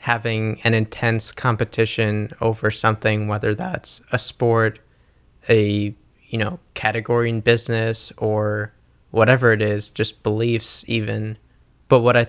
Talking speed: 125 wpm